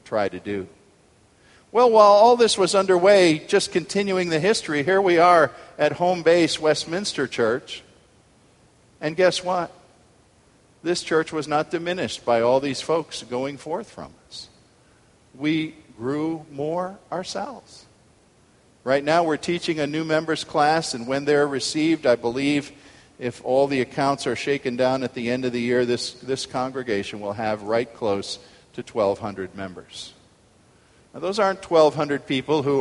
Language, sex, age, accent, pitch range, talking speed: English, male, 50-69, American, 120-170 Hz, 155 wpm